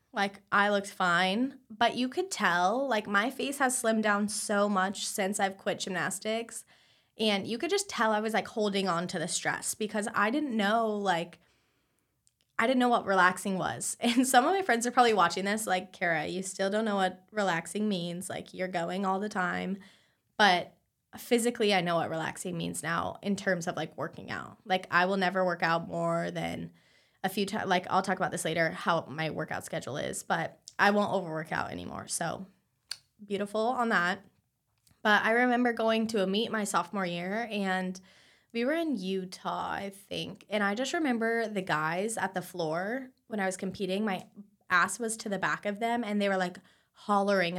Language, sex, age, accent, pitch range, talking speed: English, female, 20-39, American, 180-220 Hz, 200 wpm